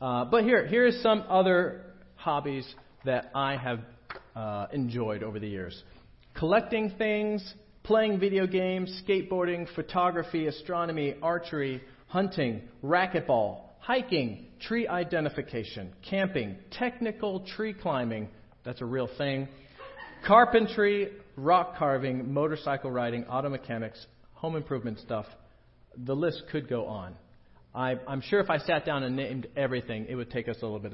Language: English